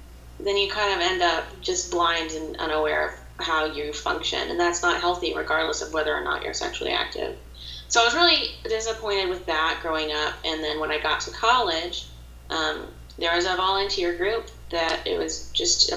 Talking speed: 200 wpm